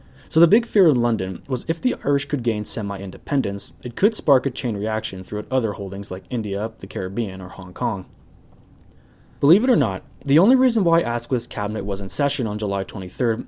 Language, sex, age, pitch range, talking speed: English, male, 20-39, 100-145 Hz, 200 wpm